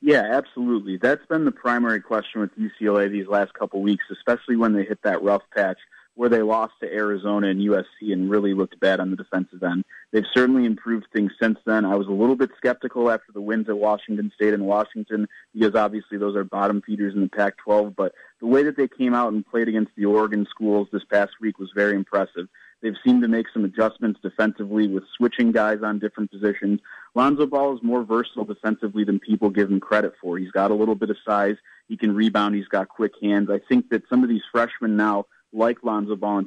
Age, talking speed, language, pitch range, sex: 30-49, 220 wpm, English, 100-110 Hz, male